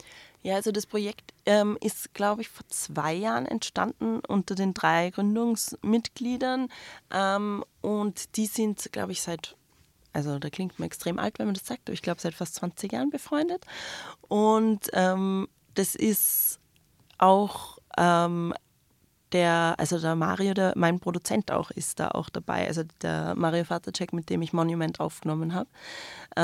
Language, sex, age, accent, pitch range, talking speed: German, female, 20-39, German, 160-195 Hz, 155 wpm